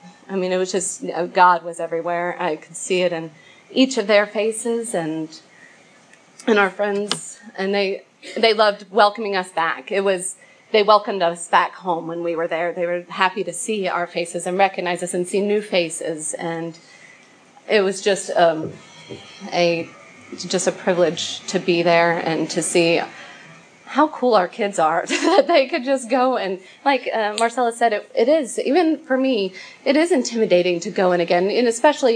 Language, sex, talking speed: English, female, 185 wpm